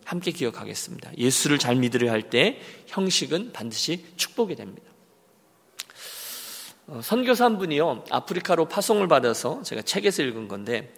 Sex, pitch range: male, 145-220 Hz